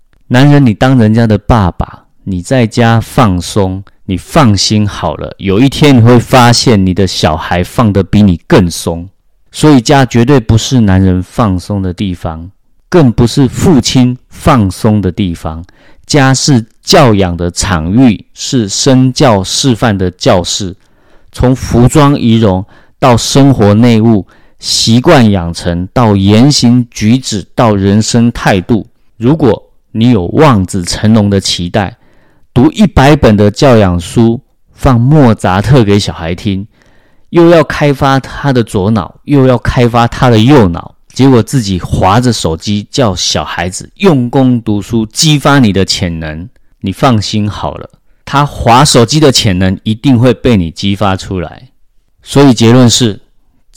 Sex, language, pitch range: male, Chinese, 95-130 Hz